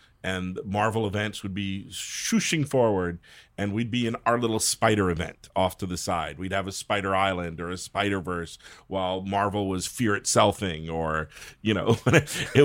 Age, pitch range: 40-59, 95-135 Hz